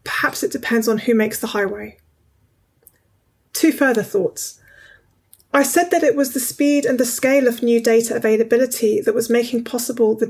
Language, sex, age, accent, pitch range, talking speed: English, female, 20-39, British, 215-265 Hz, 175 wpm